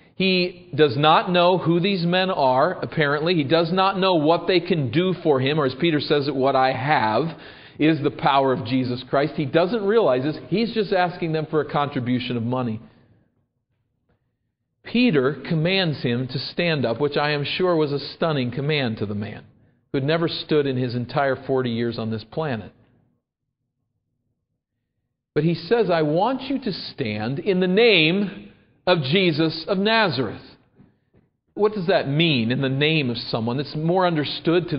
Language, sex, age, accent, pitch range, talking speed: English, male, 40-59, American, 130-185 Hz, 180 wpm